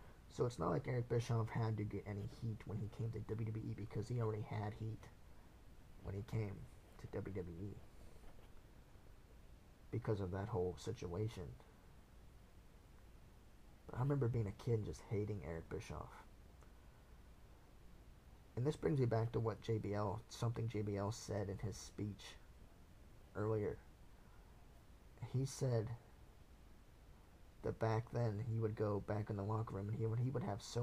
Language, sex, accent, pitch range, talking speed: English, male, American, 100-115 Hz, 150 wpm